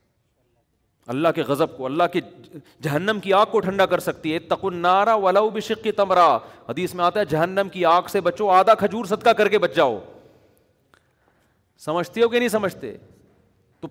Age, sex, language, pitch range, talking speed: 40-59, male, Urdu, 190-240 Hz, 175 wpm